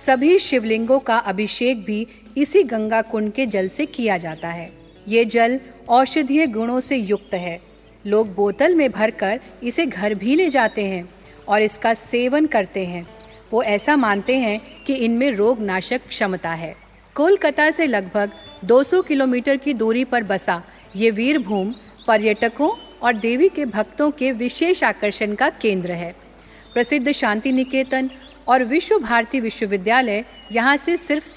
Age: 50-69